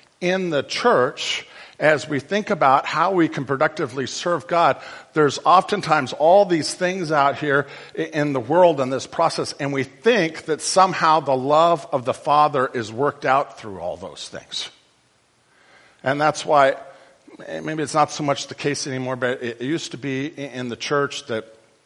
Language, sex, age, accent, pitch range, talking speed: English, male, 50-69, American, 125-160 Hz, 175 wpm